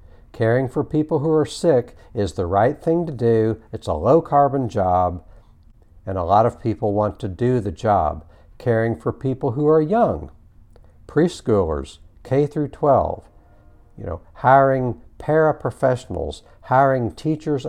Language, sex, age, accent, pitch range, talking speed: English, male, 60-79, American, 95-130 Hz, 145 wpm